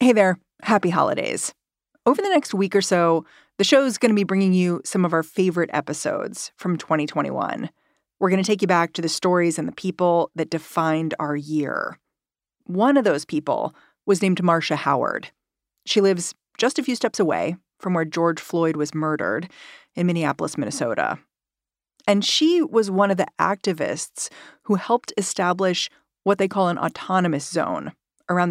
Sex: female